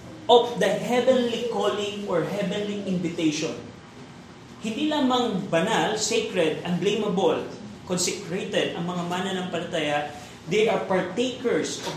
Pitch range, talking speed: 175-230 Hz, 110 wpm